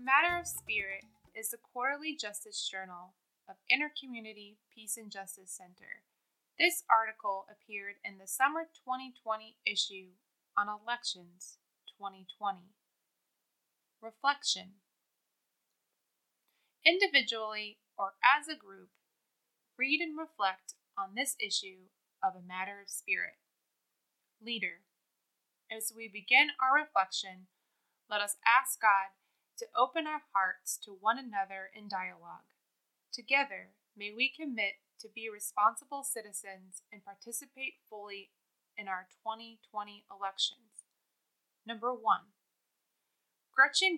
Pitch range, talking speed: 195-265 Hz, 110 wpm